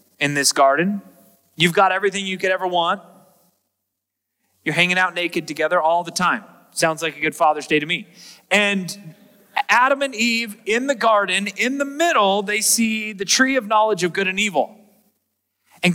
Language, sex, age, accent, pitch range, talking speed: English, male, 30-49, American, 165-210 Hz, 175 wpm